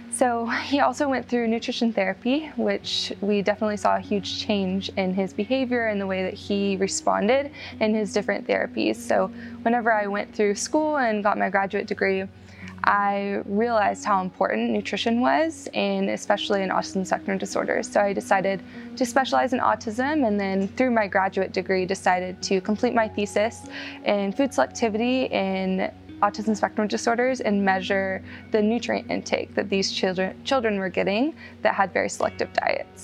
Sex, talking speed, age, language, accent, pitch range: female, 165 wpm, 20-39, English, American, 190-230 Hz